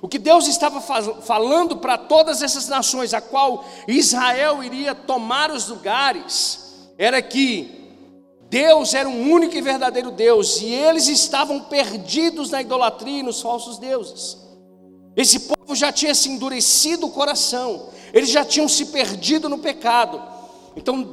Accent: Brazilian